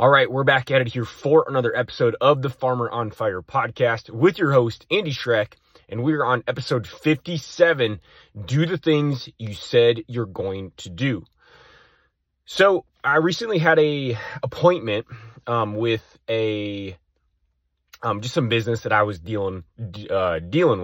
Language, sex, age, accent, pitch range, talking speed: English, male, 30-49, American, 95-135 Hz, 160 wpm